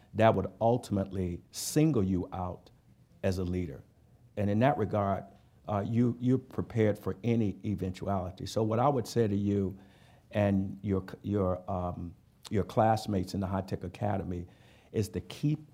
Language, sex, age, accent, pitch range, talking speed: English, male, 50-69, American, 95-115 Hz, 155 wpm